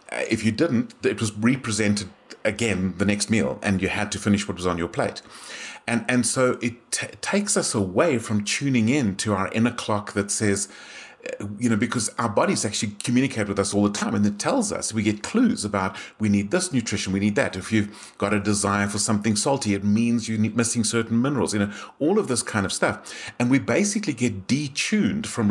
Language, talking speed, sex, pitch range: English, 220 wpm, male, 100-115 Hz